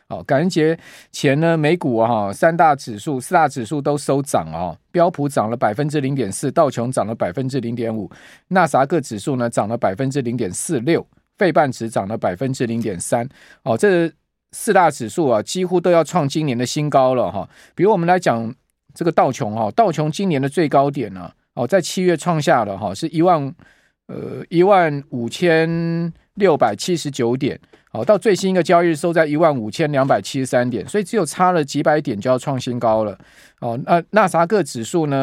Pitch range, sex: 130-175 Hz, male